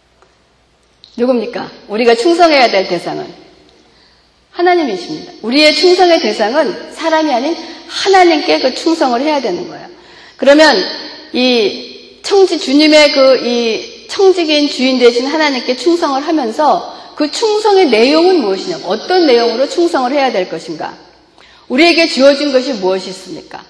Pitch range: 235-335 Hz